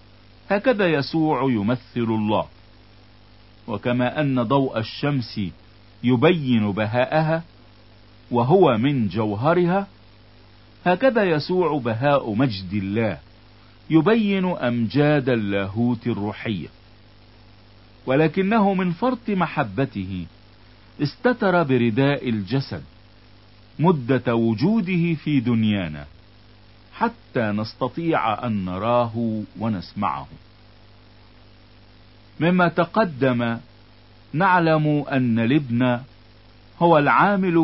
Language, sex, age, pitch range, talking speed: Italian, male, 50-69, 105-145 Hz, 70 wpm